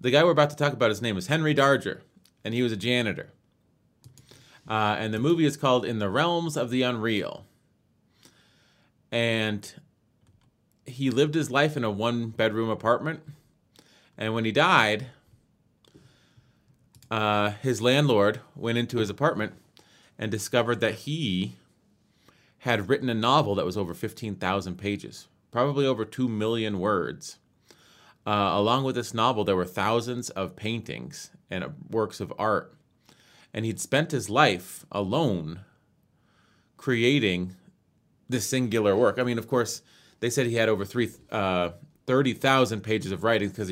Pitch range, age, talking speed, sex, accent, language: 105-130 Hz, 30-49, 145 wpm, male, American, English